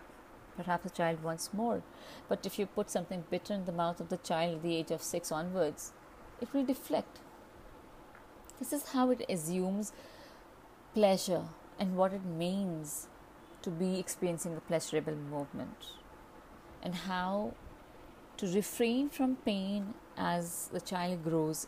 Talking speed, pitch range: 145 wpm, 175-240 Hz